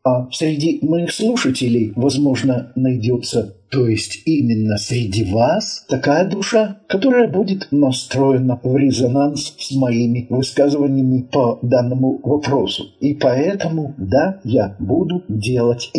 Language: English